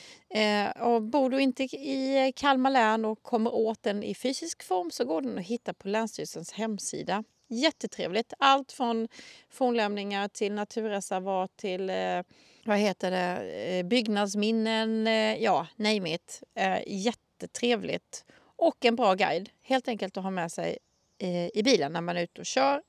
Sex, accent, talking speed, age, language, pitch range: female, native, 140 wpm, 30-49, Swedish, 205-260 Hz